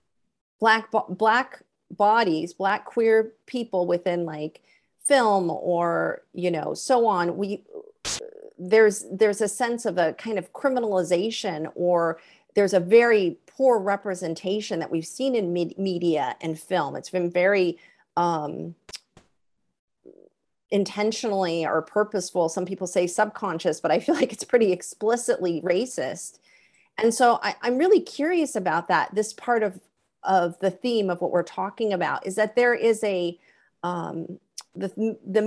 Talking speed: 140 wpm